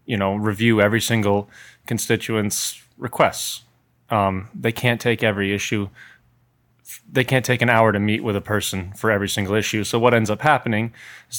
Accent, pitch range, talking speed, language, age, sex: American, 100-115 Hz, 175 wpm, English, 30-49, male